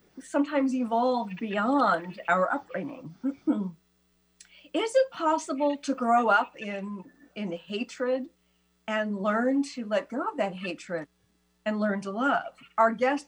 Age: 50-69